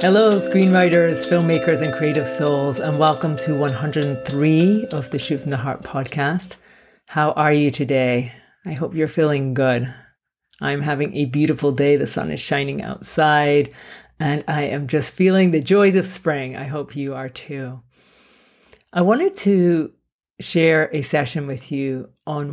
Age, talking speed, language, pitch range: 40-59, 155 wpm, English, 140-170 Hz